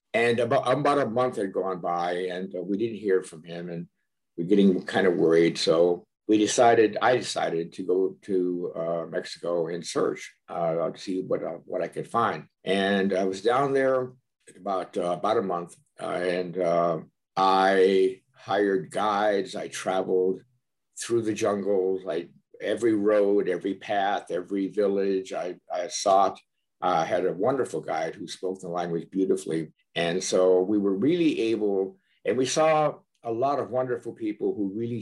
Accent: American